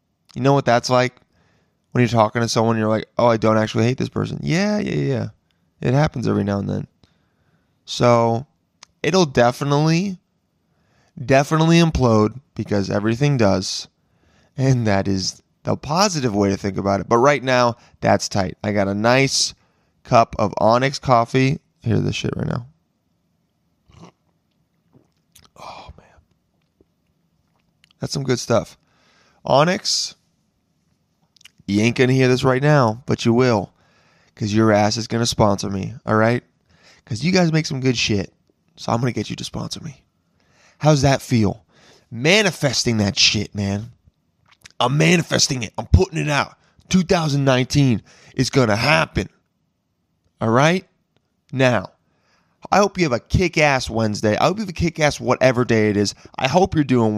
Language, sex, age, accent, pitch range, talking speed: English, male, 20-39, American, 105-145 Hz, 160 wpm